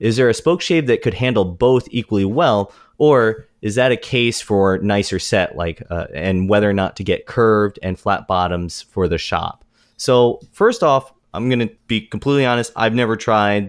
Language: English